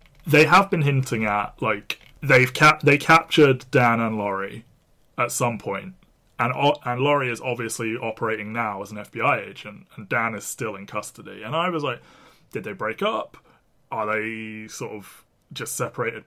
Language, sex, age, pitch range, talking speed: English, male, 20-39, 110-135 Hz, 180 wpm